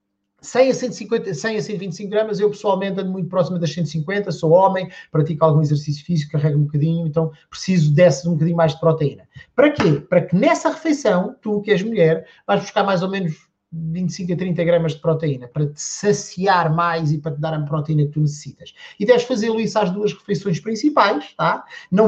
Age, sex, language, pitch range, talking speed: 30-49, male, Portuguese, 165-215 Hz, 195 wpm